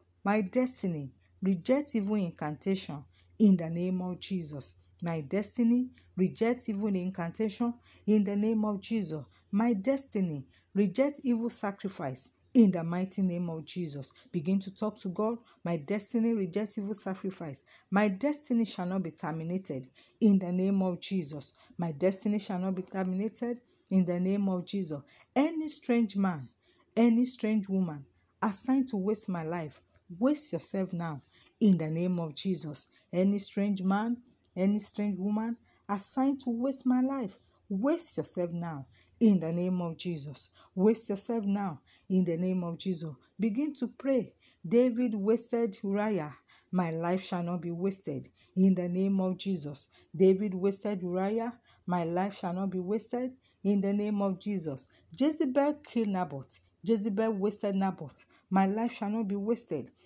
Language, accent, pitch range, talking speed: English, Nigerian, 175-220 Hz, 150 wpm